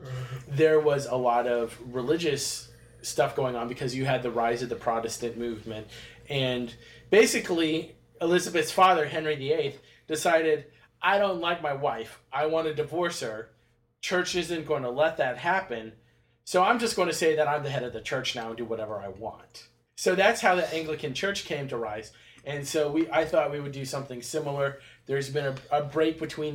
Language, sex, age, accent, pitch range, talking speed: English, male, 20-39, American, 120-150 Hz, 195 wpm